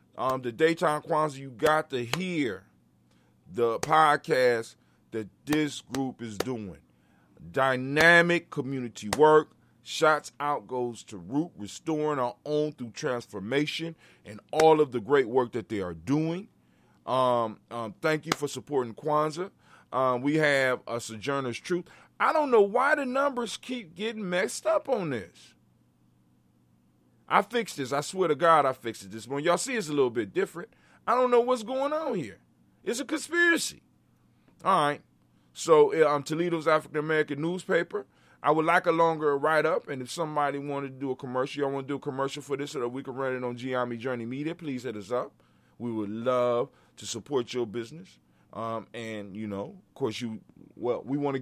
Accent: American